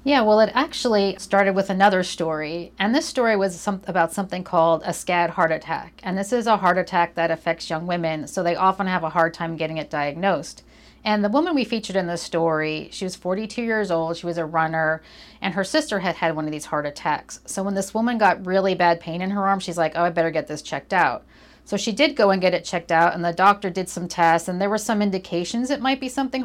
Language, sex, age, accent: English, female, 40-59, American